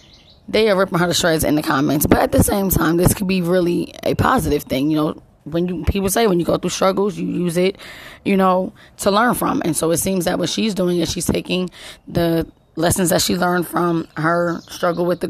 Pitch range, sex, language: 165-185 Hz, female, English